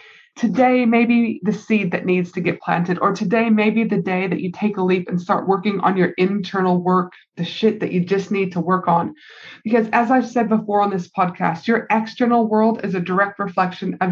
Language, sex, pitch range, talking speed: English, female, 185-220 Hz, 225 wpm